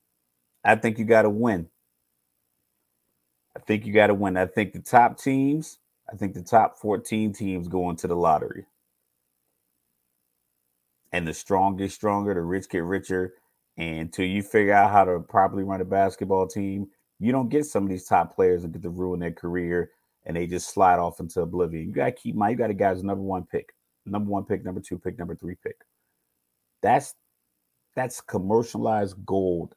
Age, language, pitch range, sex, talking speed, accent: 30-49, English, 90-110 Hz, male, 190 wpm, American